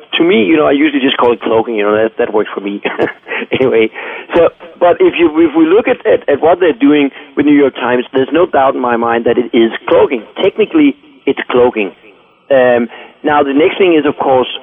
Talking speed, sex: 230 wpm, male